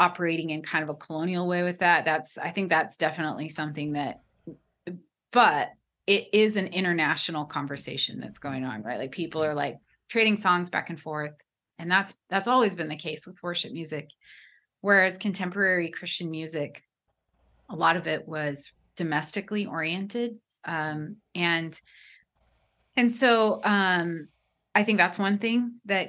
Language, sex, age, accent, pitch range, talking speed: English, female, 30-49, American, 160-200 Hz, 155 wpm